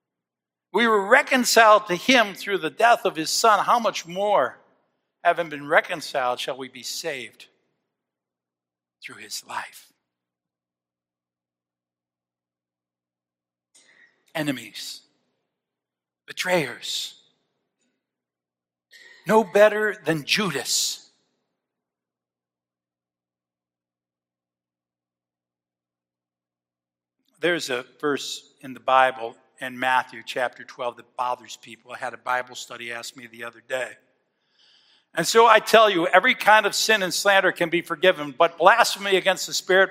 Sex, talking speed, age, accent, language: male, 110 wpm, 60-79, American, English